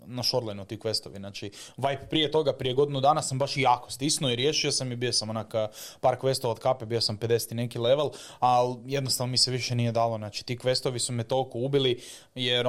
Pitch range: 120-150 Hz